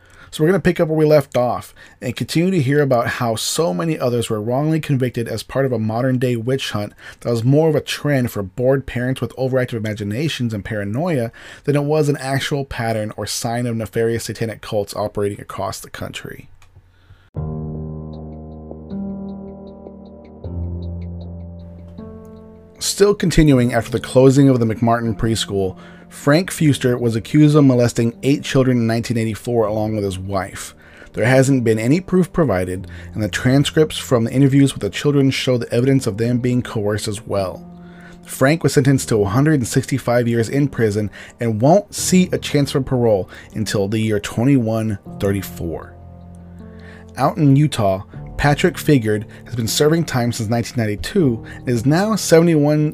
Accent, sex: American, male